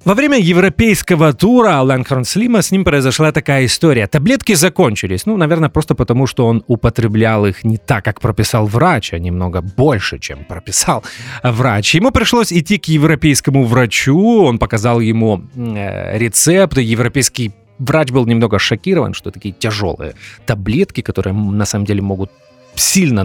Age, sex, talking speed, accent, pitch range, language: 30-49, male, 150 wpm, native, 110-160 Hz, Russian